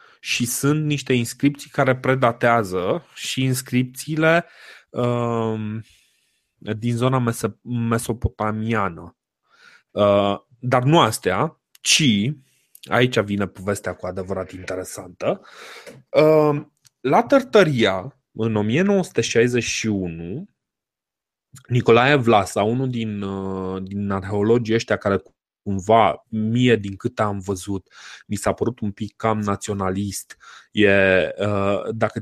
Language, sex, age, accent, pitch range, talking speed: Romanian, male, 20-39, native, 100-130 Hz, 90 wpm